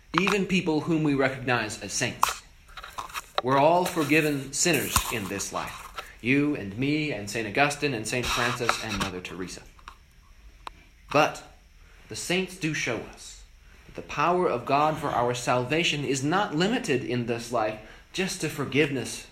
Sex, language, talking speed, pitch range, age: male, English, 150 wpm, 85-140 Hz, 30-49